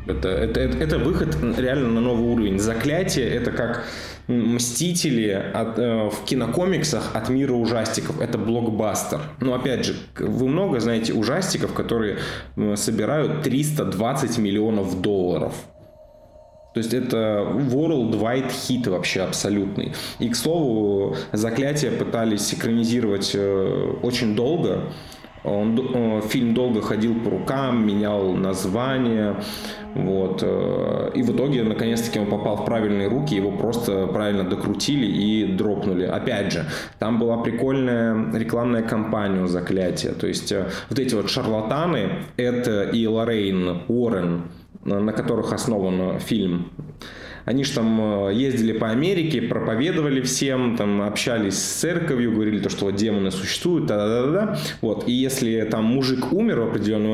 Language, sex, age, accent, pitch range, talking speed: Russian, male, 20-39, native, 105-125 Hz, 130 wpm